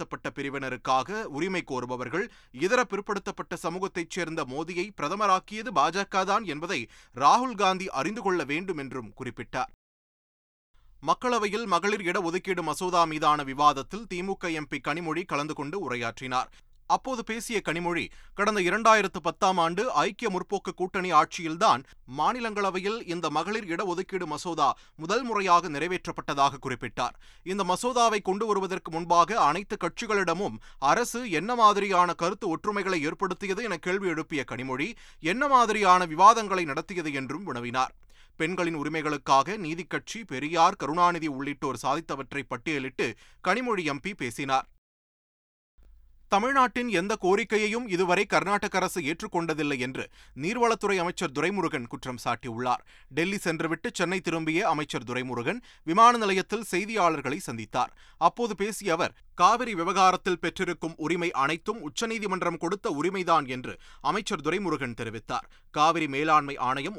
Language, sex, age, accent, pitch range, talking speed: Tamil, male, 30-49, native, 145-195 Hz, 110 wpm